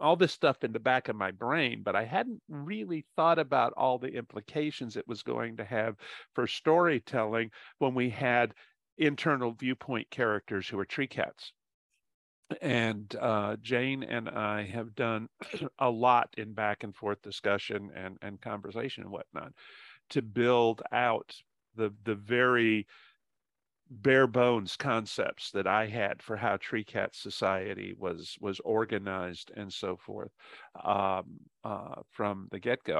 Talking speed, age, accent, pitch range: 150 wpm, 50-69, American, 105-125 Hz